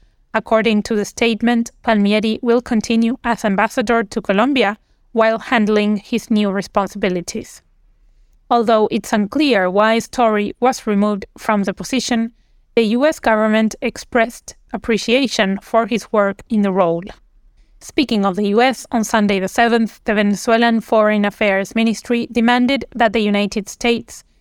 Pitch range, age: 210-240 Hz, 30-49